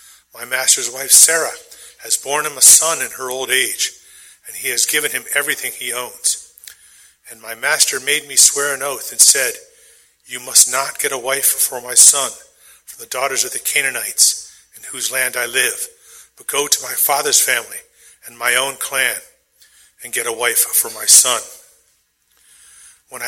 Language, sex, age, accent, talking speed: English, male, 40-59, American, 180 wpm